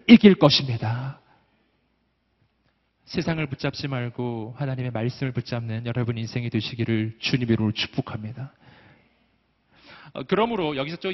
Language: Korean